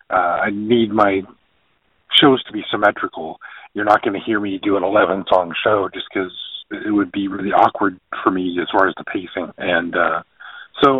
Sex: male